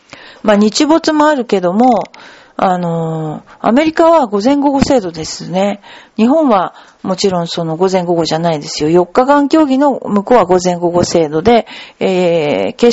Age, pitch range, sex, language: 50-69, 190-270 Hz, female, Japanese